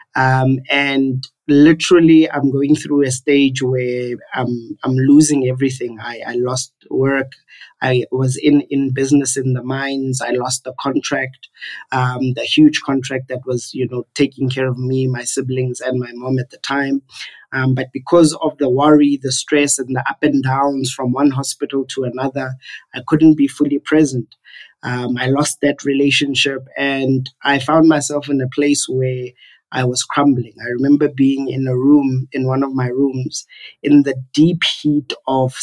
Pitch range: 130-145 Hz